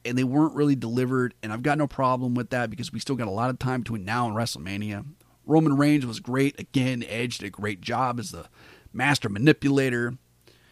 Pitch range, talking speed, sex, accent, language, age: 95-140 Hz, 215 wpm, male, American, English, 40-59